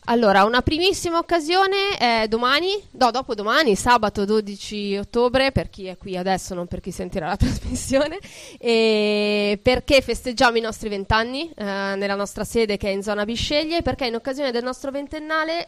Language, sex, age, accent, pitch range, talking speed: Italian, female, 20-39, native, 200-245 Hz, 170 wpm